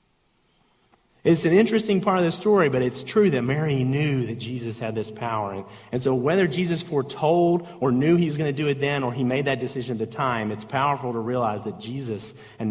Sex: male